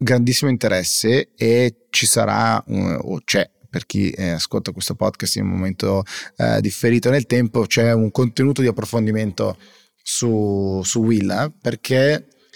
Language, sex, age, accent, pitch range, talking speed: Italian, male, 30-49, native, 105-130 Hz, 135 wpm